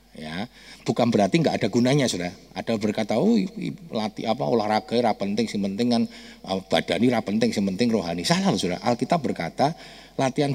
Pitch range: 130-215 Hz